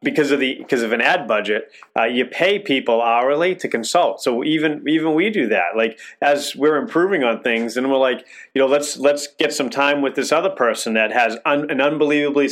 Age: 30-49